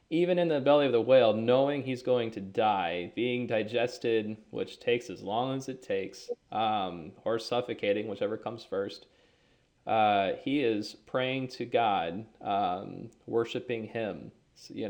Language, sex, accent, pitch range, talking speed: English, male, American, 105-130 Hz, 155 wpm